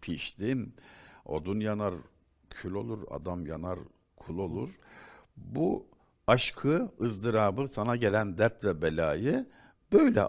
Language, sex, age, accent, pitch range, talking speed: Turkish, male, 60-79, native, 85-115 Hz, 105 wpm